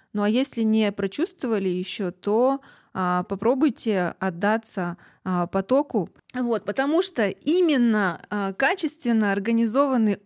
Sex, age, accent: female, 20-39, native